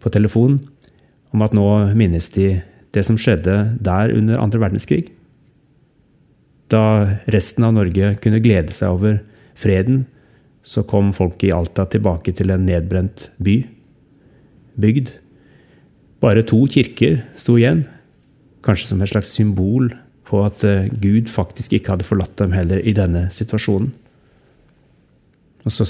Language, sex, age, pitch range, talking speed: English, male, 30-49, 95-125 Hz, 135 wpm